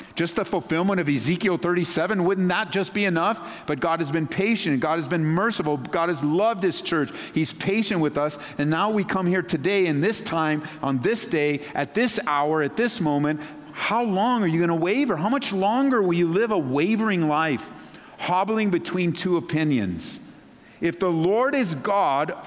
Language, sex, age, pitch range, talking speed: English, male, 50-69, 140-205 Hz, 190 wpm